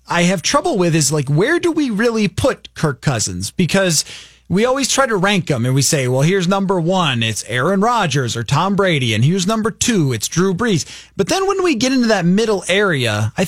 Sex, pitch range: male, 145-195 Hz